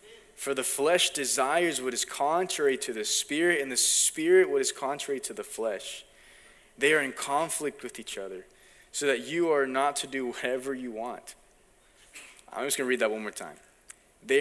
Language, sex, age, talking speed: English, male, 20-39, 190 wpm